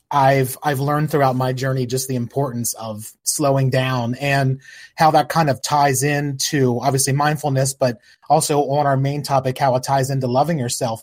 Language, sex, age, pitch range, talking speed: English, male, 30-49, 125-150 Hz, 180 wpm